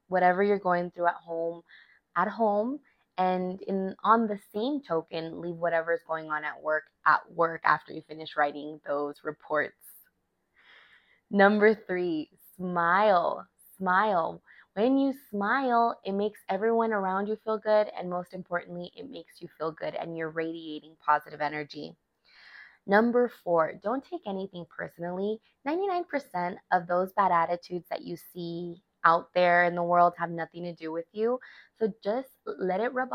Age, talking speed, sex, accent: 20-39, 155 wpm, female, American